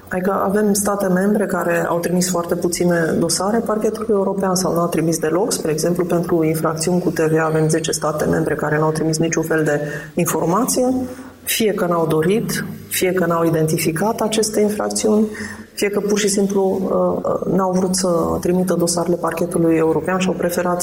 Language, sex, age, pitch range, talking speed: Romanian, female, 30-49, 170-205 Hz, 175 wpm